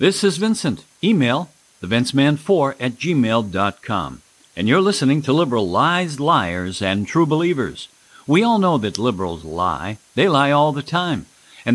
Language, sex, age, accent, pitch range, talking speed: English, male, 50-69, American, 115-165 Hz, 150 wpm